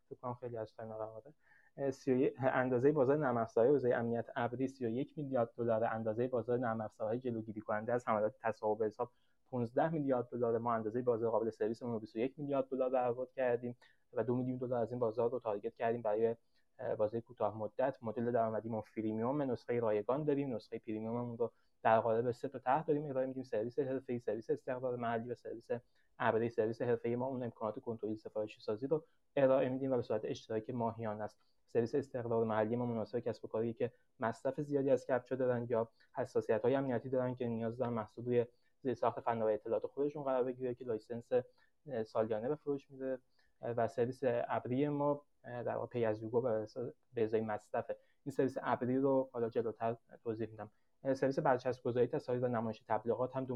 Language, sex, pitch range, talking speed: Persian, male, 115-130 Hz, 160 wpm